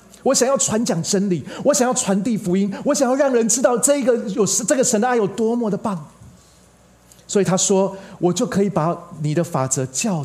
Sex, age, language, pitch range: male, 30-49, Chinese, 130-200 Hz